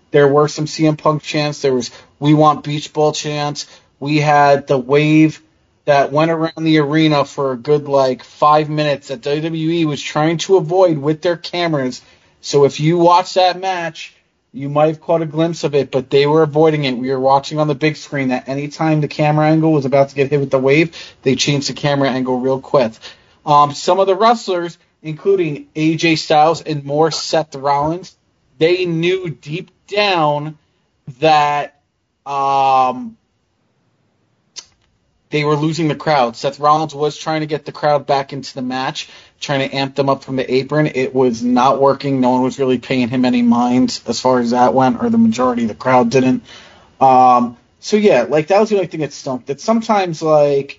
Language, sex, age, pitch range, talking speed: English, male, 30-49, 135-160 Hz, 195 wpm